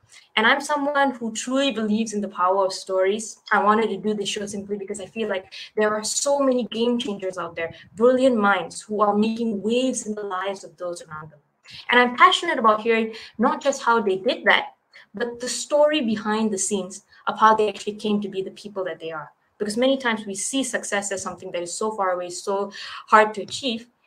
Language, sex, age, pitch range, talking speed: English, female, 20-39, 195-255 Hz, 220 wpm